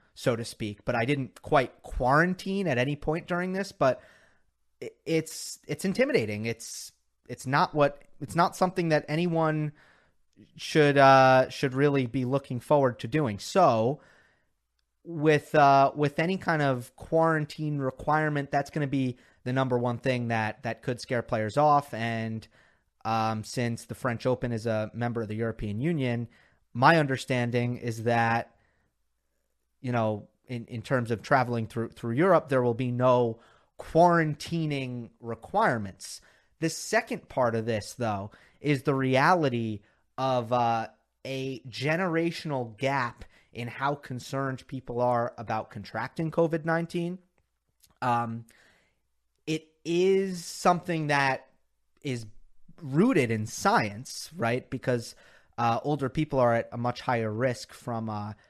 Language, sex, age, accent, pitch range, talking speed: English, male, 30-49, American, 115-150 Hz, 140 wpm